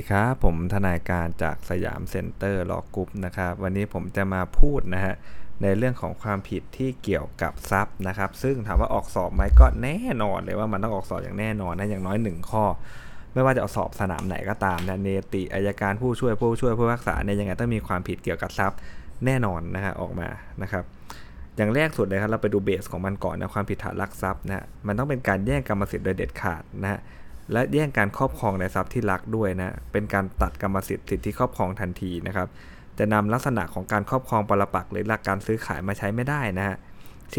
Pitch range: 95-110 Hz